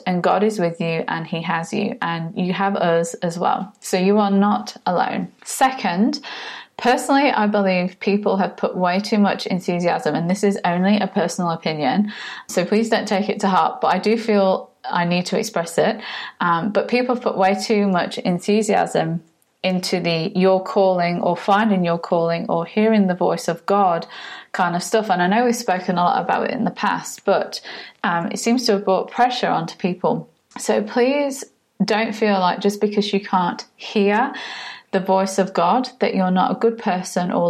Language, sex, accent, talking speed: English, female, British, 195 wpm